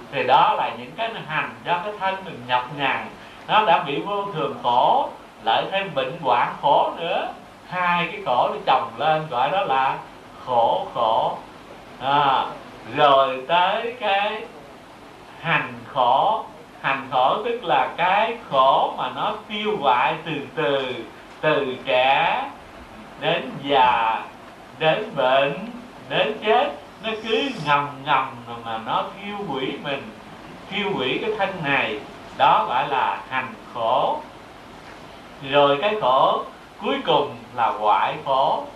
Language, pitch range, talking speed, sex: Vietnamese, 145-210 Hz, 135 wpm, male